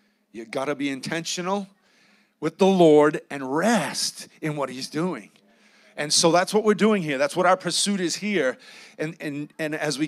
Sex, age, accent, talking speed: male, 40-59, American, 190 wpm